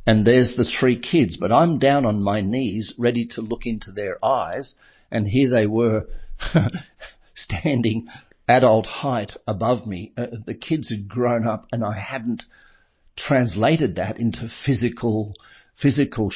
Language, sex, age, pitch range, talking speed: English, male, 50-69, 100-120 Hz, 145 wpm